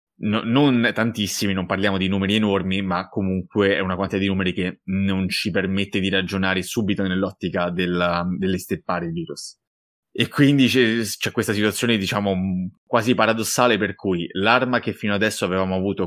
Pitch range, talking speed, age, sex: 95-110 Hz, 160 wpm, 20-39, male